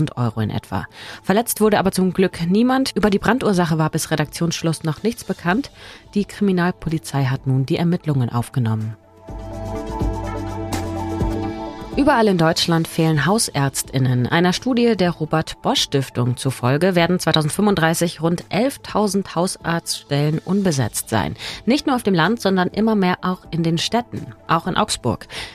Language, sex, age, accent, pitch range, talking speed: German, female, 30-49, German, 130-200 Hz, 135 wpm